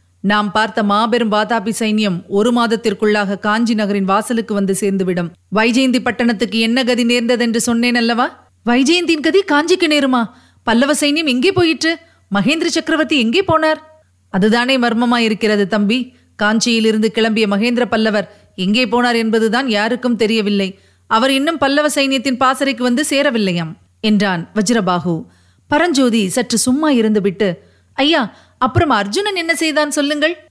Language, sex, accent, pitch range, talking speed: Tamil, female, native, 195-275 Hz, 120 wpm